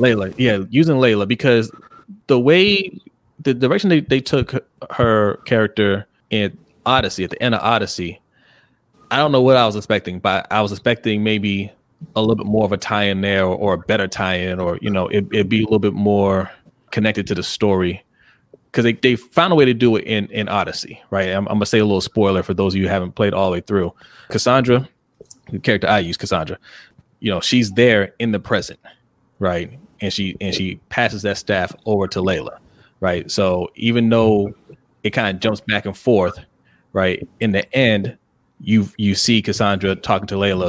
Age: 20-39